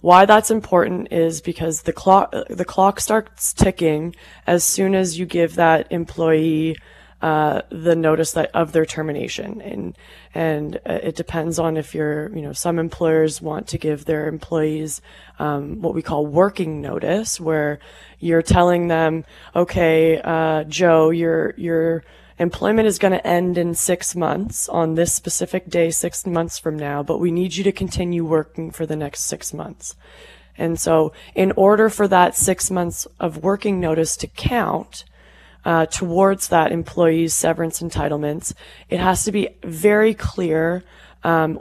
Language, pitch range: English, 160-180 Hz